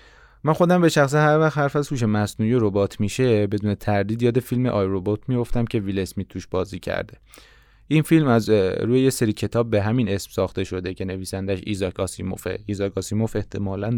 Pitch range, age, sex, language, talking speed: 100-115 Hz, 20-39, male, Persian, 190 wpm